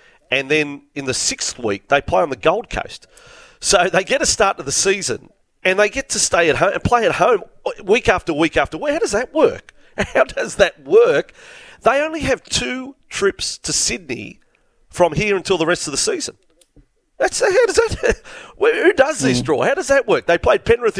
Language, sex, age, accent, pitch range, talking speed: English, male, 40-59, Australian, 130-220 Hz, 210 wpm